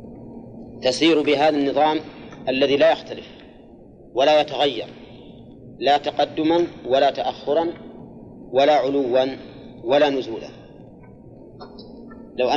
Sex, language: male, Arabic